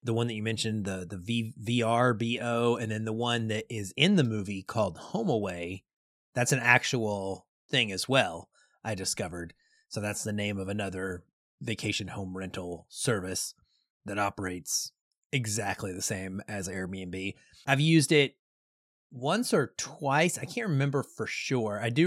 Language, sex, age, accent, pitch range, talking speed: English, male, 30-49, American, 100-125 Hz, 160 wpm